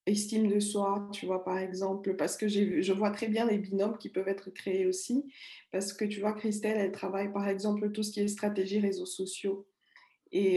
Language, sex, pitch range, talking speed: French, female, 190-215 Hz, 215 wpm